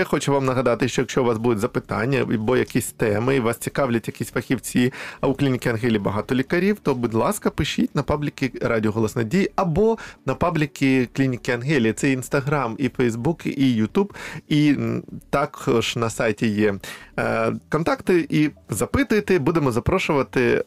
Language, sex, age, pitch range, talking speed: Ukrainian, male, 20-39, 120-165 Hz, 155 wpm